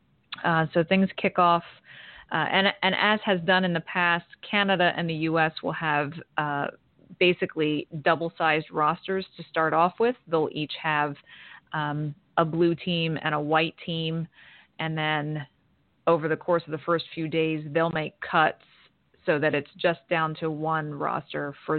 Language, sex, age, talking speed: English, female, 30-49, 170 wpm